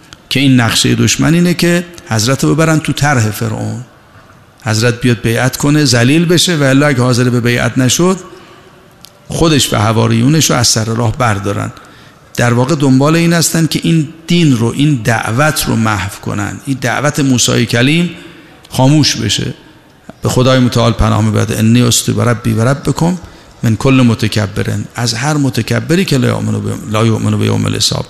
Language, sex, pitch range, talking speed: Persian, male, 115-145 Hz, 150 wpm